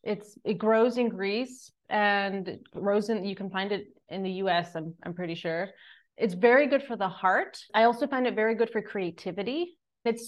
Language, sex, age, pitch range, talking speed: English, female, 30-49, 195-250 Hz, 205 wpm